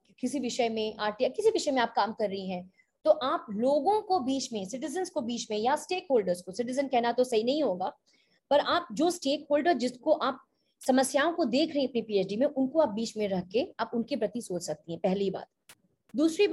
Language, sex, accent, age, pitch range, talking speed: Hindi, female, native, 20-39, 240-345 Hz, 225 wpm